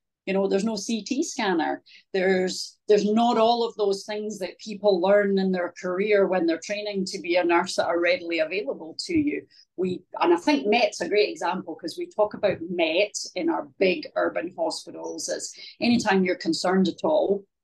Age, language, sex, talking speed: 40-59, English, female, 190 wpm